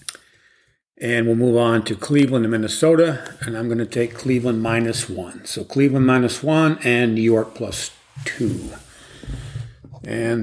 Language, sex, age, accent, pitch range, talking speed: English, male, 50-69, American, 115-140 Hz, 150 wpm